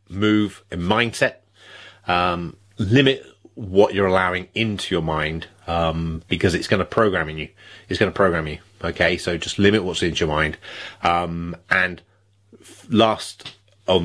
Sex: male